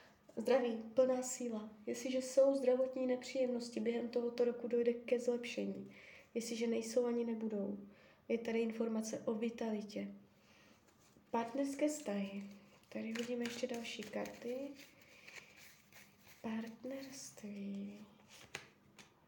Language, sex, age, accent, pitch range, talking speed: Czech, female, 20-39, native, 215-250 Hz, 95 wpm